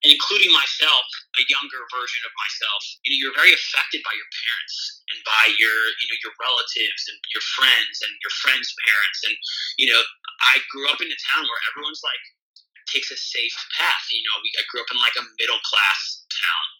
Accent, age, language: American, 30-49, English